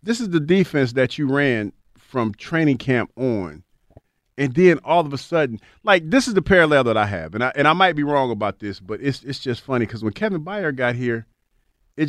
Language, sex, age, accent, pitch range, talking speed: English, male, 40-59, American, 130-185 Hz, 230 wpm